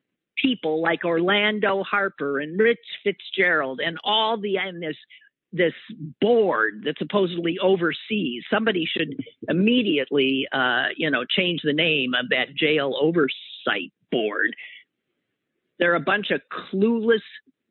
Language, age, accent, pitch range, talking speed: English, 50-69, American, 155-235 Hz, 120 wpm